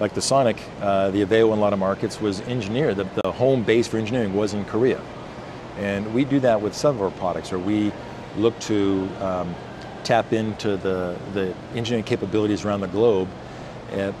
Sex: male